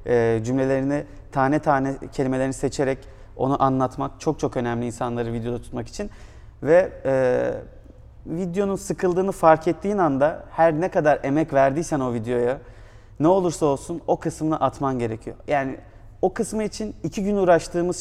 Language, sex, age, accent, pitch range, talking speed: Turkish, male, 30-49, native, 125-170 Hz, 140 wpm